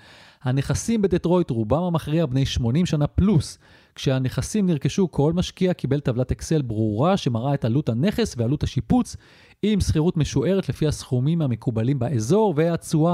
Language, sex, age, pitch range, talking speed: Hebrew, male, 30-49, 125-175 Hz, 135 wpm